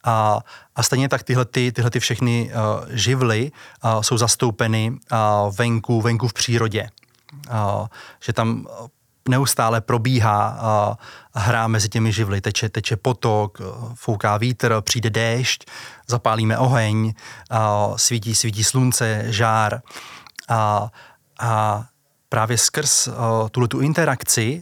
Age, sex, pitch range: 30-49, male, 110-125 Hz